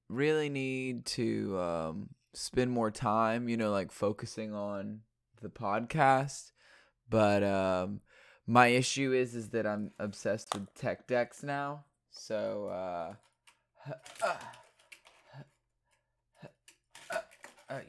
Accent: American